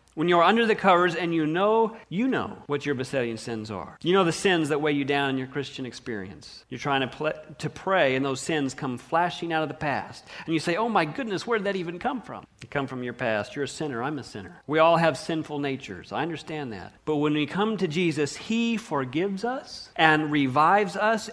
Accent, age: American, 40-59